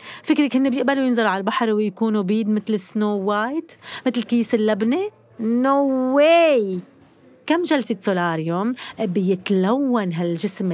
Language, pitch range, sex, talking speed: Arabic, 195-260 Hz, female, 125 wpm